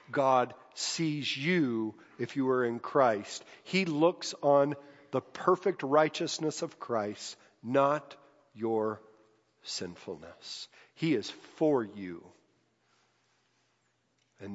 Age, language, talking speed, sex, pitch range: 50-69, English, 100 wpm, male, 135-180 Hz